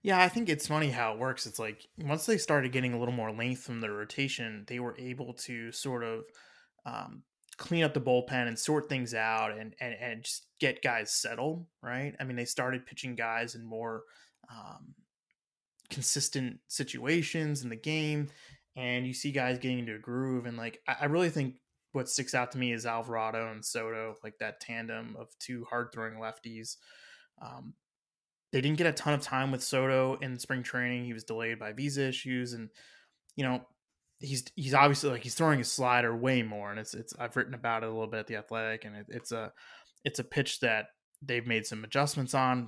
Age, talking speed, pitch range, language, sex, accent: 20-39, 205 wpm, 115-140 Hz, English, male, American